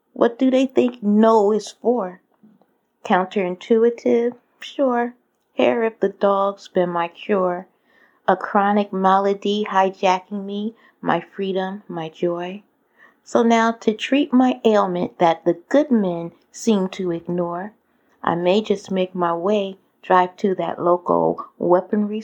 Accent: American